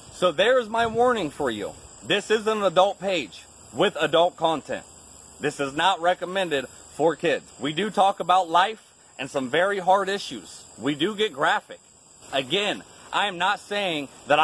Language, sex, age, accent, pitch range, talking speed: English, male, 30-49, American, 155-205 Hz, 165 wpm